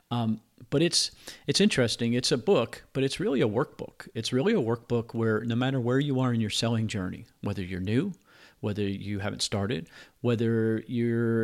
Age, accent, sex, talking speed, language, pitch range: 40-59, American, male, 190 wpm, English, 105-130 Hz